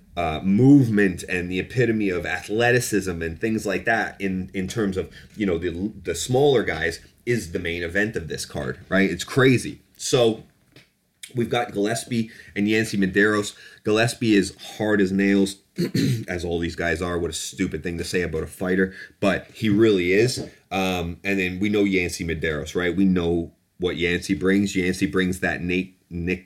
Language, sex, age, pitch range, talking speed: English, male, 30-49, 90-110 Hz, 180 wpm